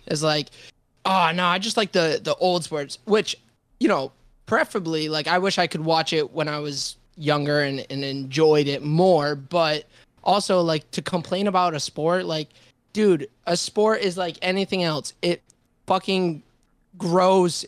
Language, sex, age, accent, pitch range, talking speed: English, male, 20-39, American, 155-185 Hz, 170 wpm